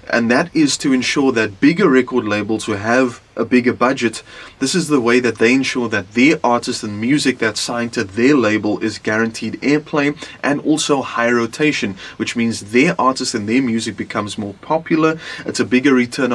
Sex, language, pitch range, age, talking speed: male, English, 110-135 Hz, 30-49, 190 wpm